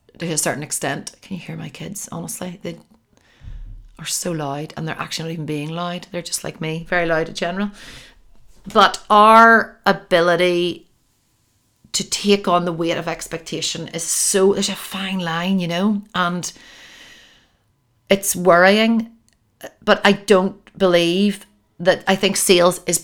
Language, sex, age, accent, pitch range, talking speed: English, female, 40-59, Irish, 165-200 Hz, 155 wpm